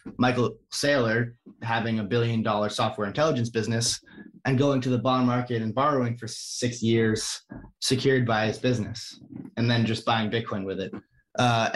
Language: English